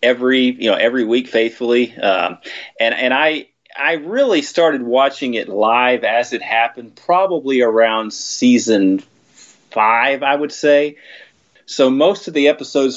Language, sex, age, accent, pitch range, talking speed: English, male, 30-49, American, 110-140 Hz, 145 wpm